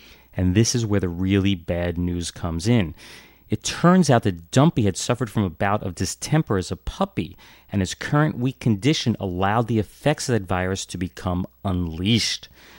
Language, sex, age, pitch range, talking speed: English, male, 30-49, 90-115 Hz, 185 wpm